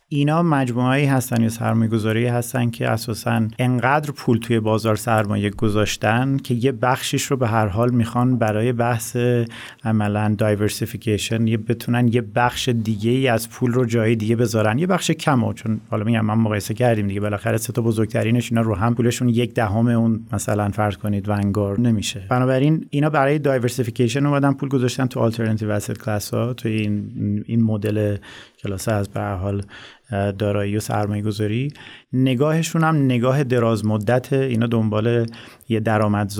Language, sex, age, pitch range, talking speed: Persian, male, 30-49, 105-125 Hz, 160 wpm